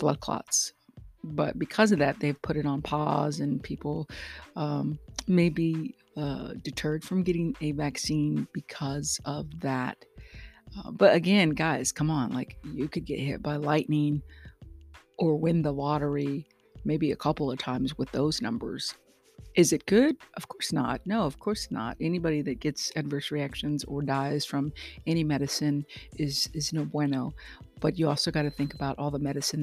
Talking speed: 170 wpm